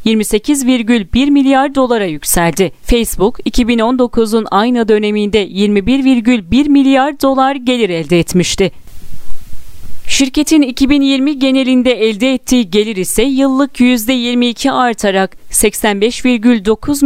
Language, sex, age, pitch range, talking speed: Turkish, female, 40-59, 220-275 Hz, 85 wpm